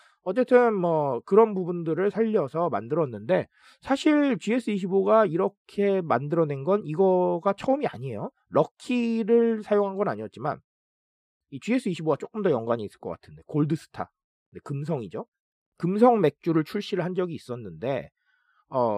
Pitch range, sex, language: 135-220 Hz, male, Korean